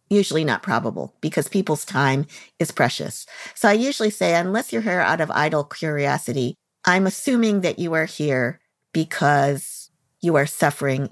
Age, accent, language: 50-69, American, English